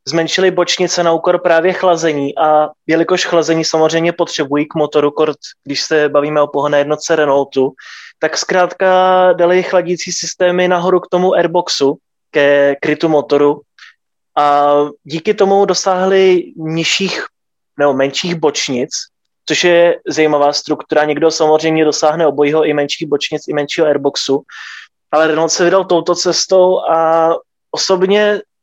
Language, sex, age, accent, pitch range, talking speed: Czech, male, 20-39, native, 145-175 Hz, 130 wpm